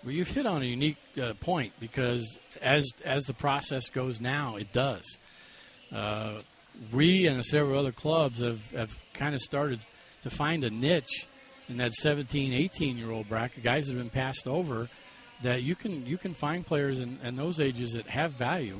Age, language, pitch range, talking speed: 50-69, English, 120-155 Hz, 180 wpm